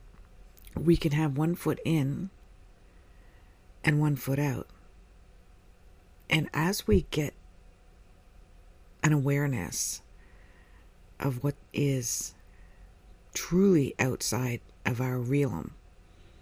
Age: 50-69